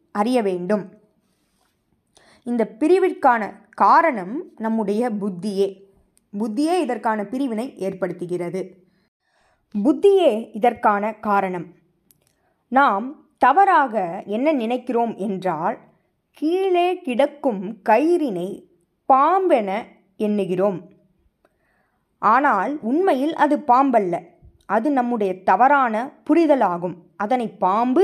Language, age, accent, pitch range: Tamil, 20-39, native, 190-285 Hz